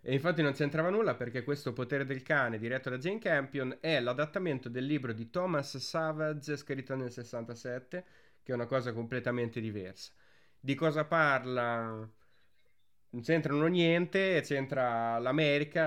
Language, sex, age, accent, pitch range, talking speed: Italian, male, 20-39, native, 120-155 Hz, 145 wpm